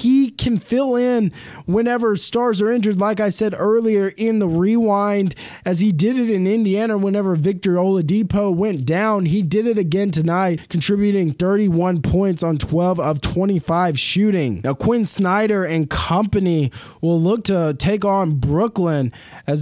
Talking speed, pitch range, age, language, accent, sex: 155 wpm, 160-210 Hz, 20-39, English, American, male